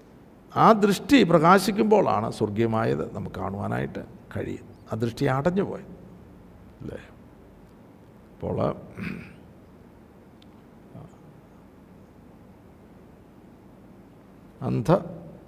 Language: Malayalam